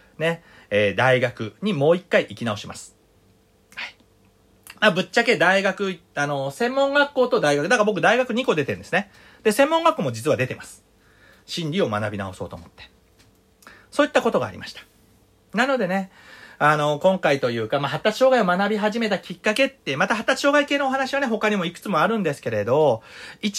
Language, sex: Japanese, male